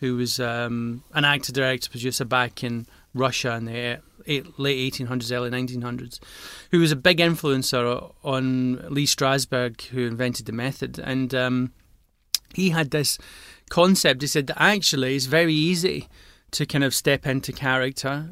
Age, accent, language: 30-49, British, English